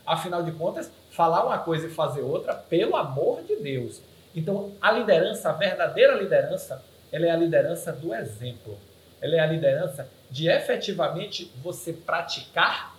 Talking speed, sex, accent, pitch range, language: 155 wpm, male, Brazilian, 165-225 Hz, Portuguese